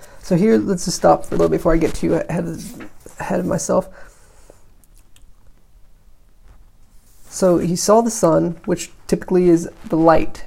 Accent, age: American, 20-39